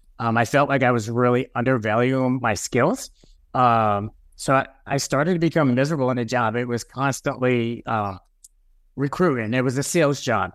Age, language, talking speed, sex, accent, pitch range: 30-49, English, 175 wpm, male, American, 115-140 Hz